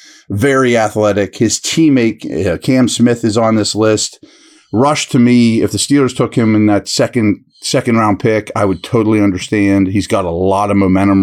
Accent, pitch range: American, 100-125 Hz